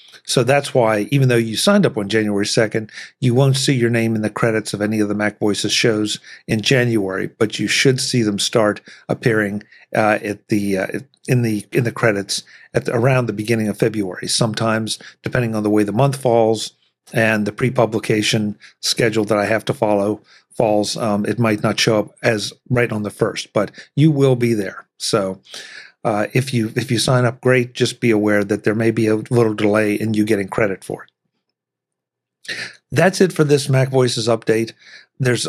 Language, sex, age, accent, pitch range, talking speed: English, male, 50-69, American, 105-125 Hz, 200 wpm